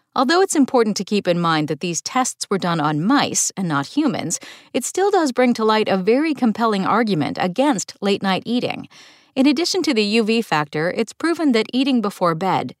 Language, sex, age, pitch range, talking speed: English, female, 40-59, 180-265 Hz, 195 wpm